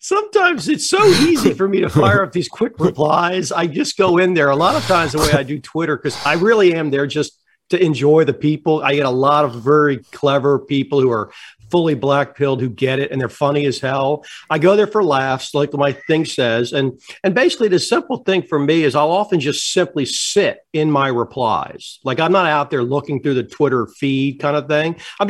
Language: English